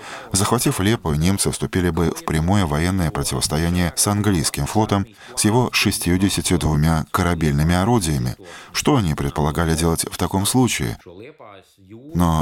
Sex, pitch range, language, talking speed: male, 75-105 Hz, Russian, 125 wpm